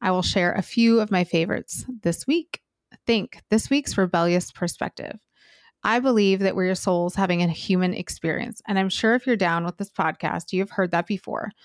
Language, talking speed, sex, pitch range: English, 195 wpm, female, 175-205 Hz